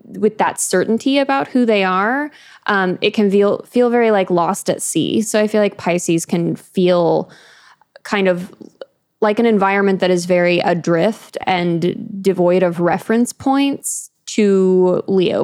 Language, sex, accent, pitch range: English, female, American, 180-220 Hz